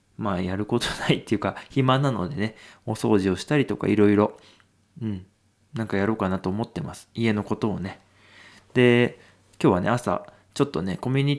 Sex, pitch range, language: male, 100-125 Hz, Japanese